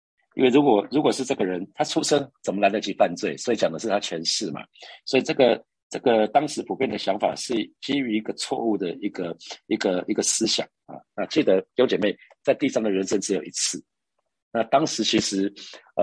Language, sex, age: Chinese, male, 50-69